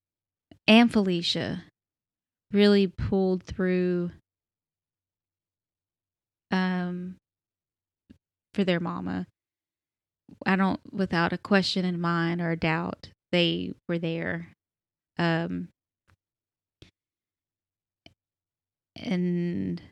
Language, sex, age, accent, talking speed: English, female, 20-39, American, 70 wpm